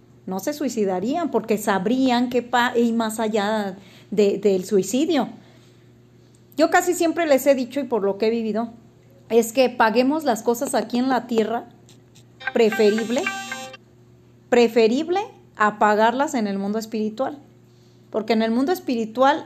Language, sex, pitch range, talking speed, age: Spanish, female, 215-275 Hz, 140 wpm, 30-49